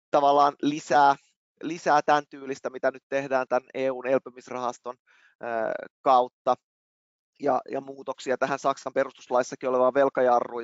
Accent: native